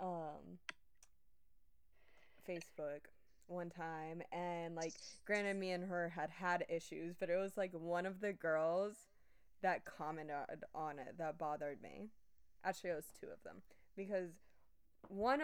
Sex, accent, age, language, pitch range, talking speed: female, American, 20-39, English, 155-185 Hz, 140 wpm